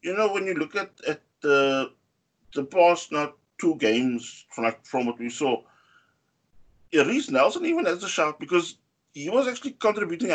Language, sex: English, male